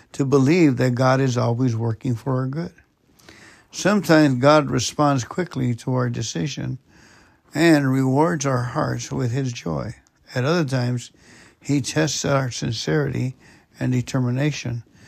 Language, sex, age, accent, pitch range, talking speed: English, male, 60-79, American, 125-150 Hz, 130 wpm